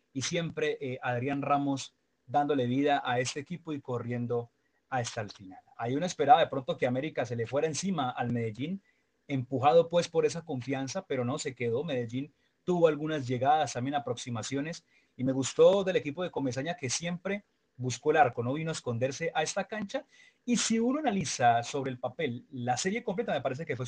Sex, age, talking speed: male, 30-49, 190 wpm